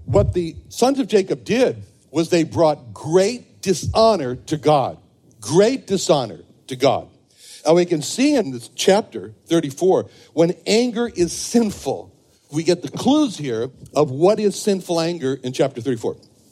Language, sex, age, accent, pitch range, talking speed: English, male, 60-79, American, 150-205 Hz, 155 wpm